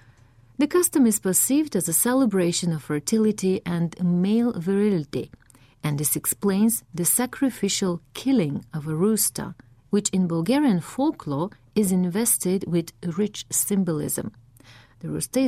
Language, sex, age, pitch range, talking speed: Bulgarian, female, 40-59, 155-210 Hz, 125 wpm